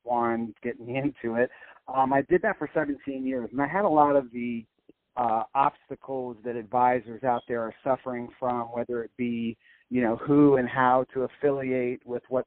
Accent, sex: American, male